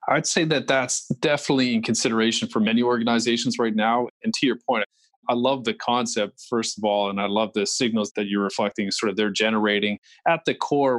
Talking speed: 210 wpm